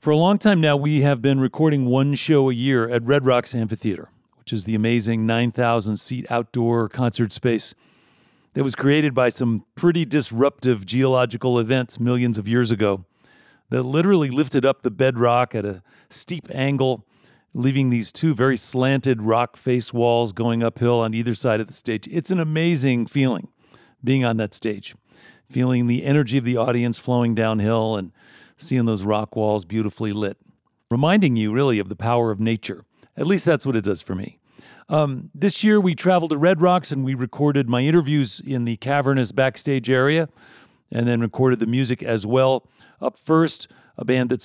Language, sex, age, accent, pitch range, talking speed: English, male, 40-59, American, 115-140 Hz, 180 wpm